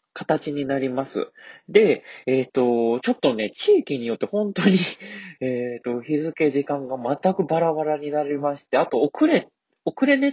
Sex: male